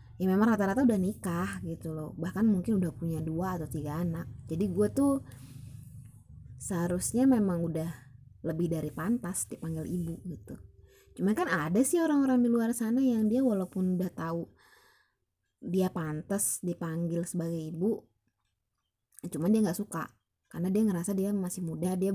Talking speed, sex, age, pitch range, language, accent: 150 wpm, female, 20-39, 165-205 Hz, Indonesian, native